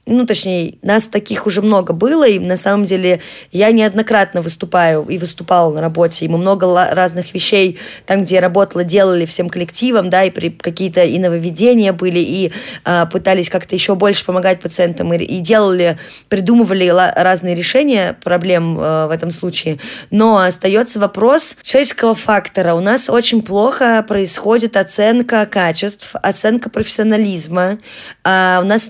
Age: 20-39